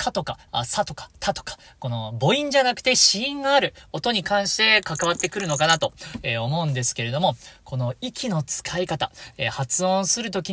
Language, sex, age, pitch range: Japanese, male, 40-59, 130-200 Hz